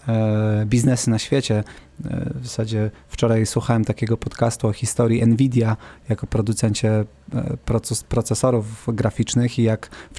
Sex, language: male, Polish